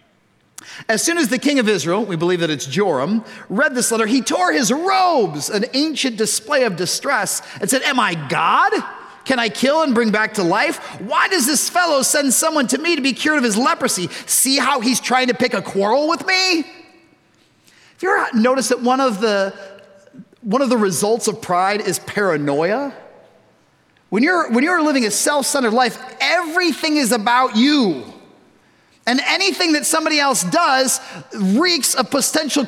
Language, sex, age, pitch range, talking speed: English, male, 30-49, 210-285 Hz, 175 wpm